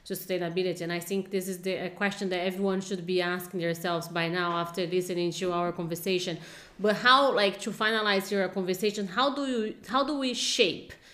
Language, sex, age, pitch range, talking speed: English, female, 30-49, 180-210 Hz, 195 wpm